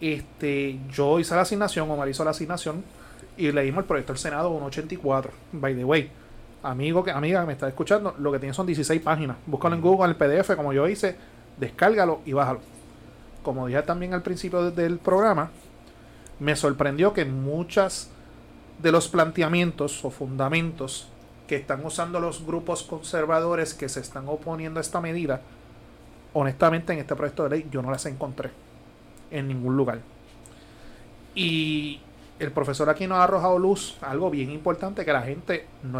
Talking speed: 170 wpm